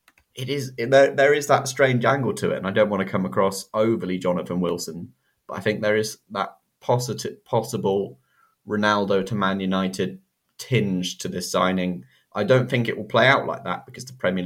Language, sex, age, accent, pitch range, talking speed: English, male, 20-39, British, 90-110 Hz, 200 wpm